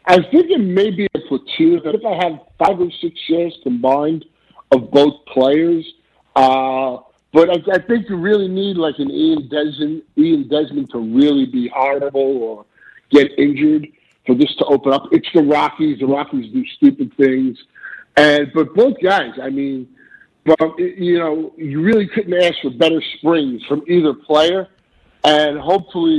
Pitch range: 140-175 Hz